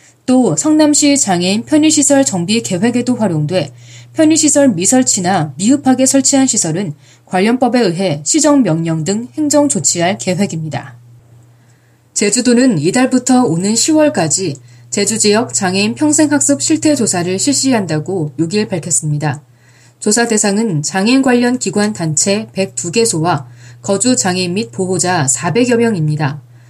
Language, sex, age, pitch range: Korean, female, 20-39, 160-255 Hz